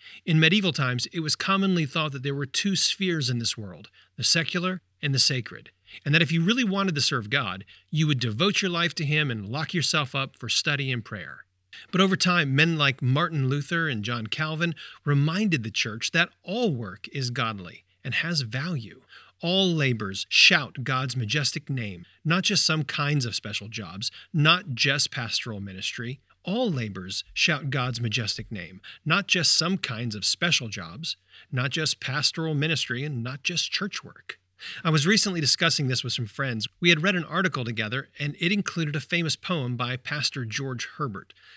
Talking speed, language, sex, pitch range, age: 185 wpm, English, male, 115-165 Hz, 40-59